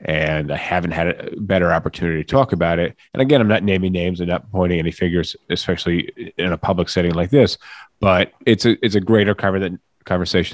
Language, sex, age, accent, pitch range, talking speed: English, male, 30-49, American, 80-95 Hz, 215 wpm